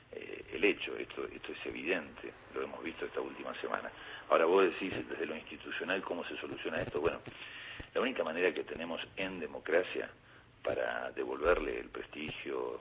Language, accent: Spanish, Argentinian